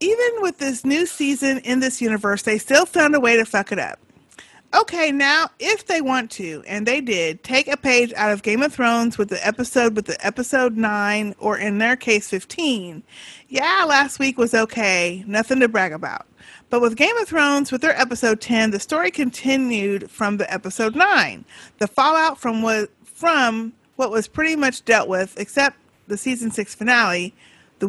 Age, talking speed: 30-49, 185 wpm